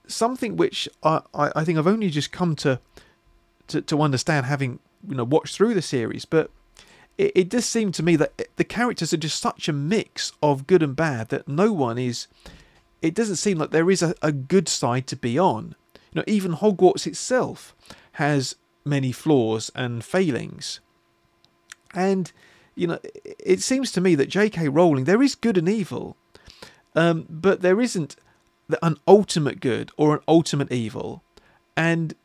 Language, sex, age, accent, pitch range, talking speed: English, male, 40-59, British, 135-180 Hz, 175 wpm